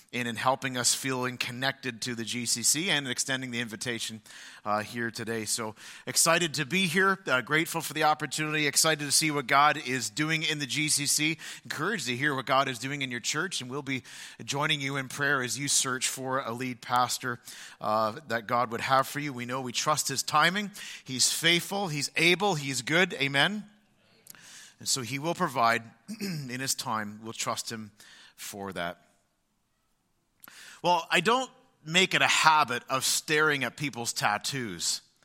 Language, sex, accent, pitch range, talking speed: English, male, American, 125-160 Hz, 180 wpm